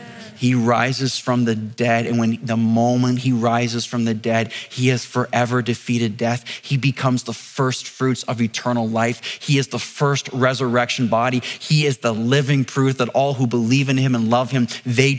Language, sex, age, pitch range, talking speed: English, male, 30-49, 130-175 Hz, 190 wpm